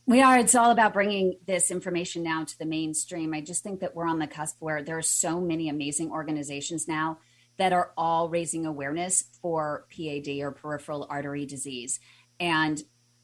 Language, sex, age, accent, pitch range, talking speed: English, female, 30-49, American, 155-210 Hz, 180 wpm